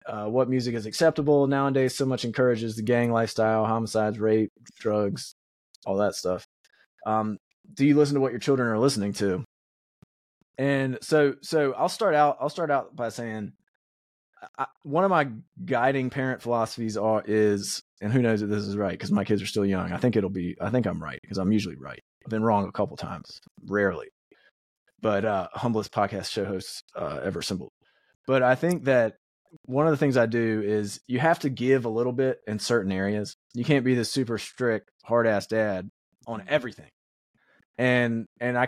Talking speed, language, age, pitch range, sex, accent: 195 wpm, English, 20-39, 105-135 Hz, male, American